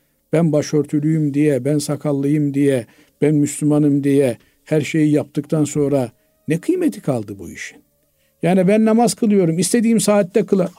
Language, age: Turkish, 50-69